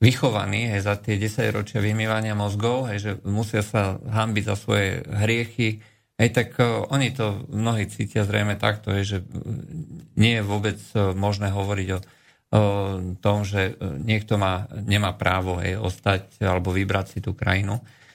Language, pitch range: Slovak, 105-120 Hz